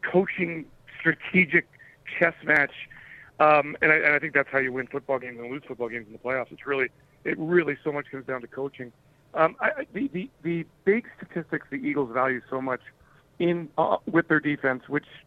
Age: 40-59